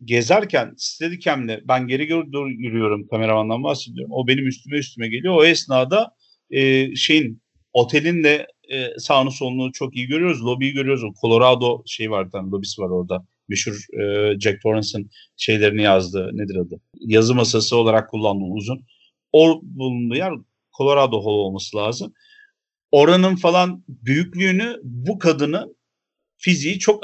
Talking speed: 135 wpm